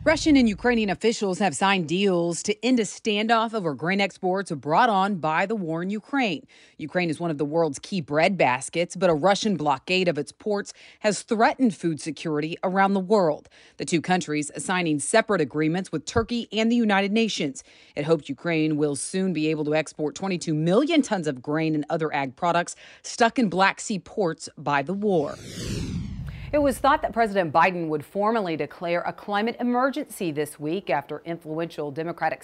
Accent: American